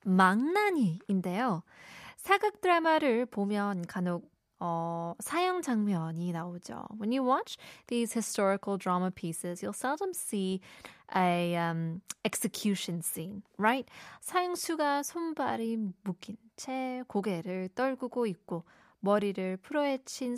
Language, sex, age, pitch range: Korean, female, 20-39, 185-245 Hz